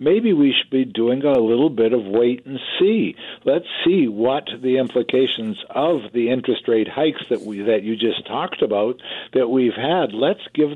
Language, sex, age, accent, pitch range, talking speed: English, male, 60-79, American, 120-150 Hz, 190 wpm